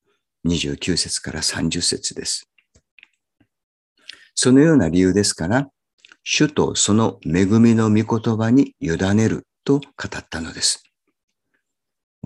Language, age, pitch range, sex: Japanese, 50-69, 95-130 Hz, male